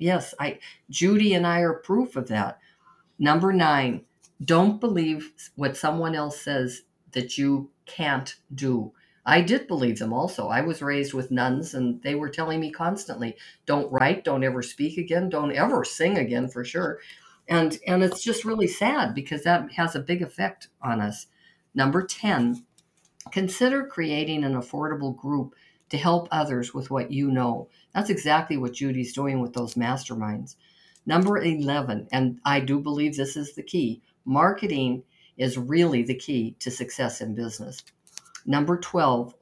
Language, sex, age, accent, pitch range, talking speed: English, female, 50-69, American, 130-170 Hz, 160 wpm